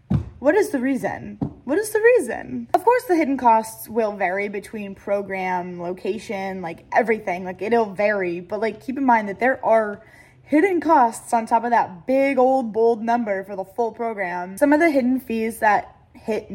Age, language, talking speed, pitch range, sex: 10-29, English, 190 wpm, 195-255 Hz, female